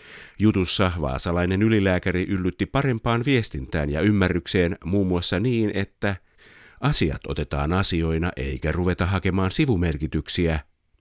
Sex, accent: male, native